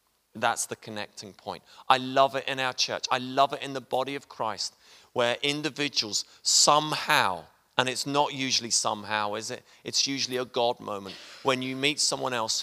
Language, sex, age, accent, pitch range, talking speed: English, male, 30-49, British, 110-135 Hz, 180 wpm